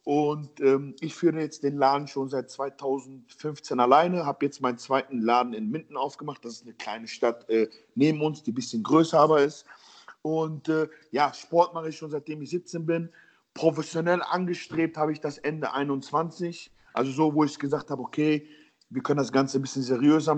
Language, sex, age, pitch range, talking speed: German, male, 40-59, 135-160 Hz, 190 wpm